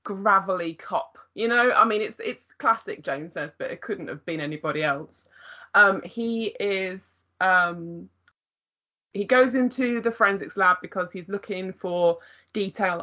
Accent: British